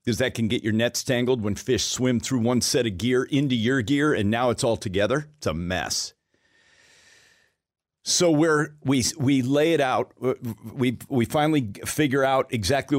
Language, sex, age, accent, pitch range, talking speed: English, male, 50-69, American, 105-135 Hz, 180 wpm